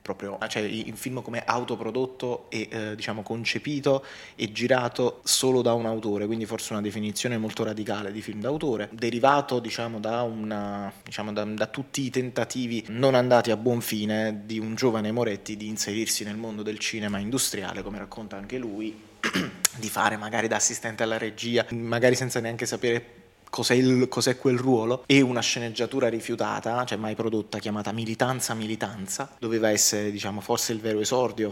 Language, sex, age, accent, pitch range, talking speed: Italian, male, 20-39, native, 110-120 Hz, 165 wpm